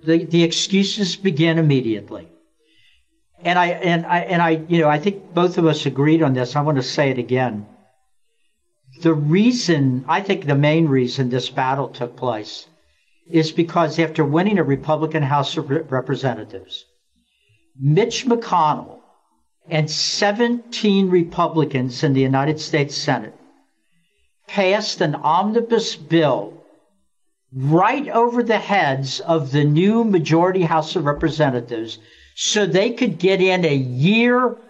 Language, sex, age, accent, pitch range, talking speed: English, male, 60-79, American, 145-210 Hz, 135 wpm